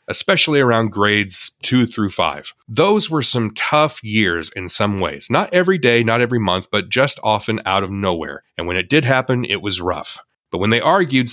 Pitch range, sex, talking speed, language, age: 100-130 Hz, male, 200 wpm, English, 30-49